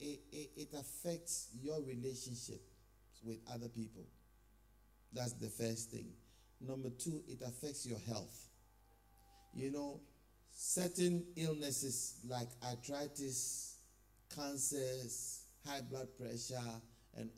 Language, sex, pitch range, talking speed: English, male, 115-150 Hz, 95 wpm